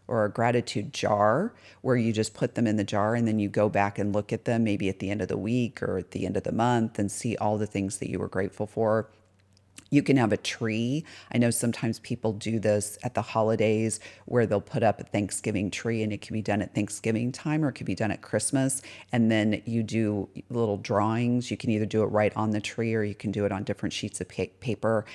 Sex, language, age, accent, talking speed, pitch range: female, English, 40-59, American, 255 wpm, 100-115 Hz